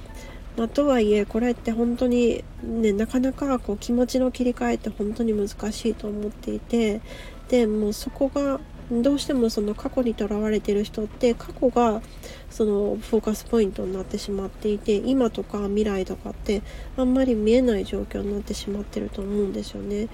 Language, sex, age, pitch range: Japanese, female, 40-59, 210-245 Hz